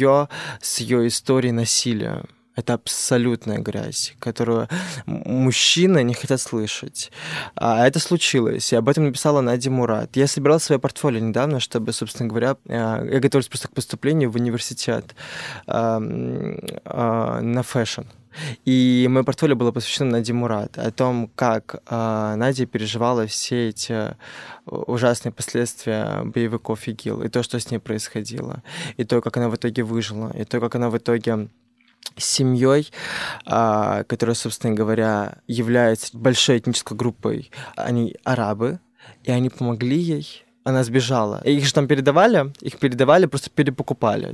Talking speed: 135 wpm